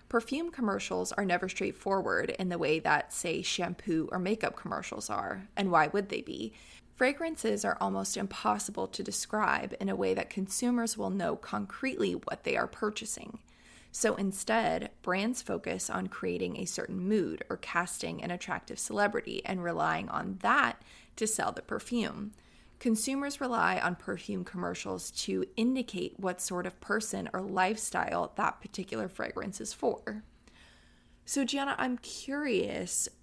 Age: 20-39